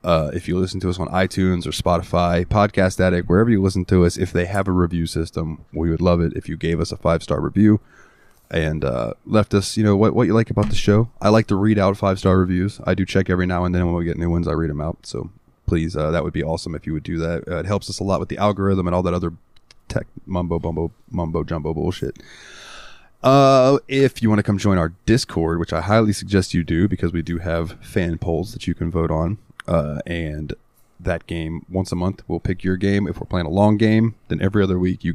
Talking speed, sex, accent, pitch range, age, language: 250 wpm, male, American, 85-105 Hz, 20-39, English